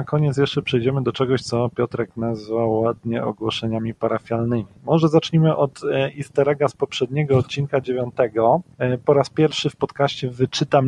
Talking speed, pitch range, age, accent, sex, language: 145 wpm, 125-155 Hz, 40-59, native, male, Polish